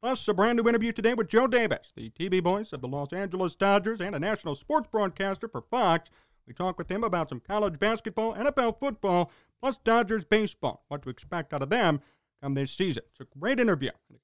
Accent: American